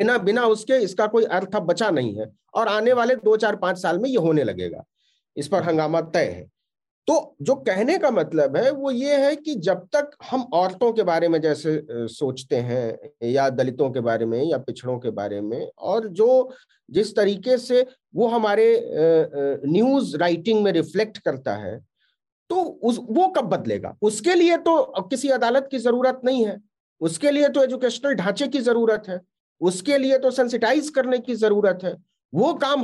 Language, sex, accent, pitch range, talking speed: Hindi, male, native, 175-265 Hz, 180 wpm